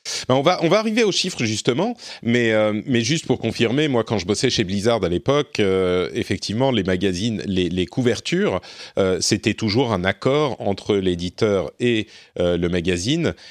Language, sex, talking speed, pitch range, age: French, male, 180 wpm, 95-120 Hz, 30-49